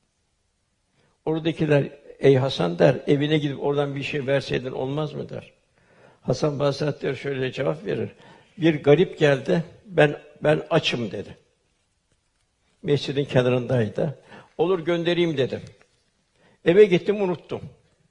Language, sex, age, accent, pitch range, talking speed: Turkish, male, 60-79, native, 140-165 Hz, 115 wpm